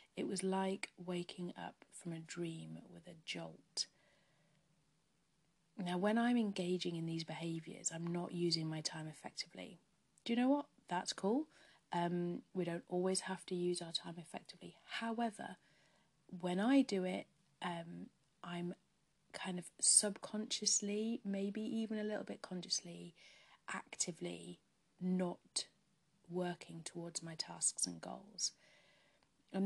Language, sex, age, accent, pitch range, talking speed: English, female, 30-49, British, 170-195 Hz, 130 wpm